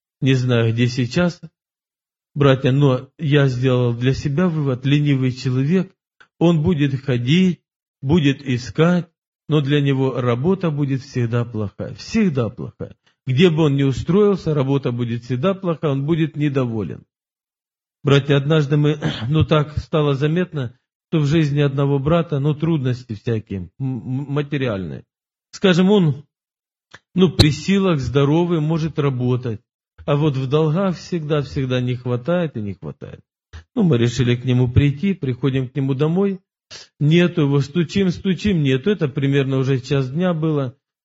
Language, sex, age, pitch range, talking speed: Russian, male, 40-59, 130-160 Hz, 135 wpm